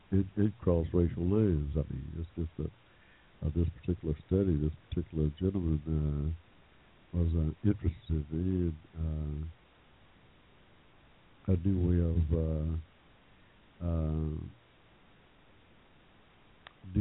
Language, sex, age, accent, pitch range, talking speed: English, male, 60-79, American, 80-90 Hz, 95 wpm